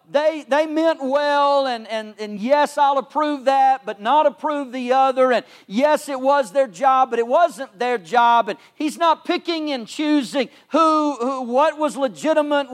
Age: 40-59